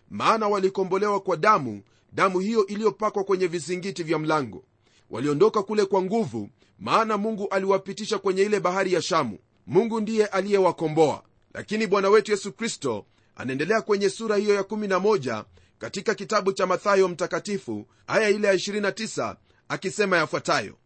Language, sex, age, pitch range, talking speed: Swahili, male, 30-49, 160-205 Hz, 135 wpm